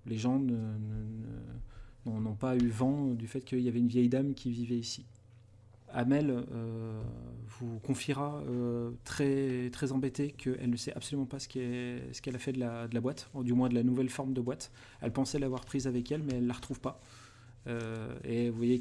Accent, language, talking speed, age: French, French, 220 wpm, 30-49